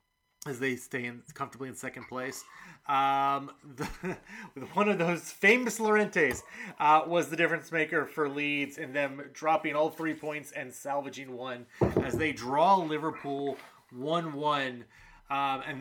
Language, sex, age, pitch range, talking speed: English, male, 30-49, 125-155 Hz, 145 wpm